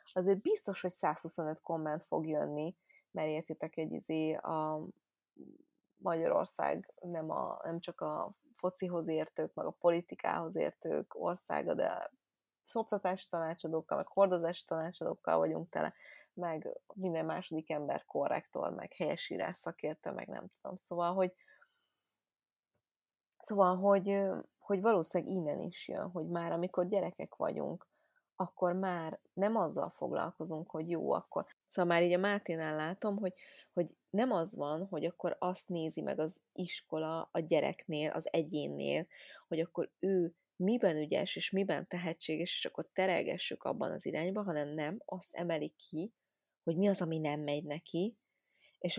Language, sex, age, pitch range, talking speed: Hungarian, female, 20-39, 160-185 Hz, 140 wpm